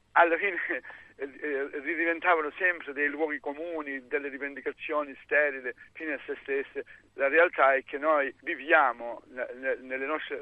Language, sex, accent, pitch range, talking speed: Italian, male, native, 140-170 Hz, 140 wpm